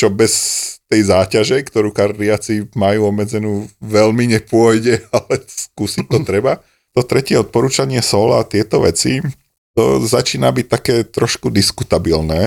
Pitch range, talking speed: 90-105 Hz, 130 wpm